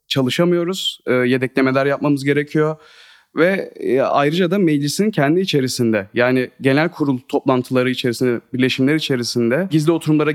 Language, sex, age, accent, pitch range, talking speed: Turkish, male, 30-49, native, 125-155 Hz, 110 wpm